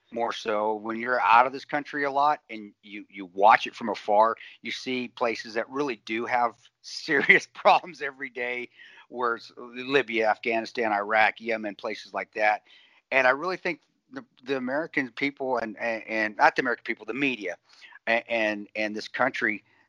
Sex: male